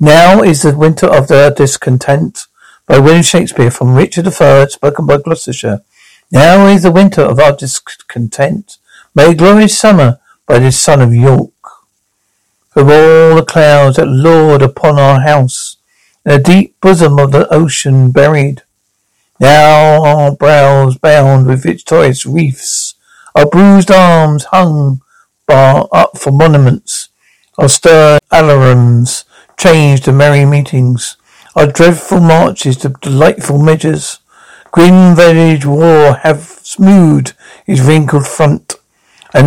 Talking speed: 130 wpm